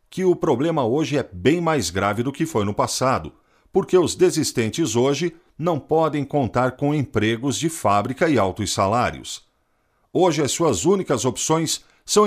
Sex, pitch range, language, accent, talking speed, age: male, 115-160 Hz, Portuguese, Brazilian, 160 wpm, 50-69